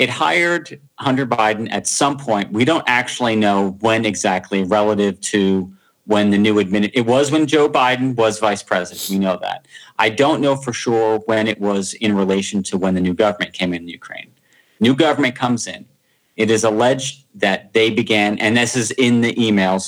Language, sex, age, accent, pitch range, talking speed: English, male, 40-59, American, 100-120 Hz, 195 wpm